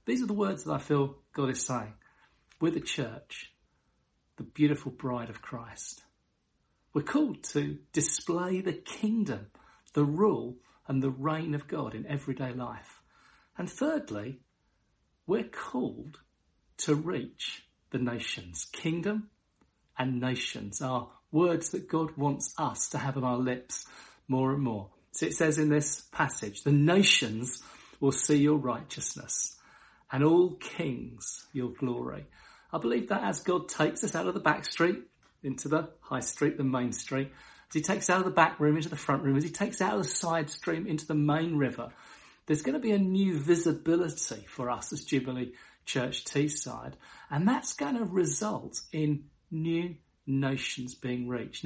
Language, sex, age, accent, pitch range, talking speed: English, male, 50-69, British, 130-170 Hz, 165 wpm